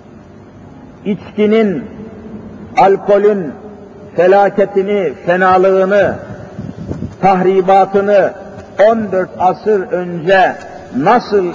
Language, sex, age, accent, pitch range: Turkish, male, 50-69, native, 185-215 Hz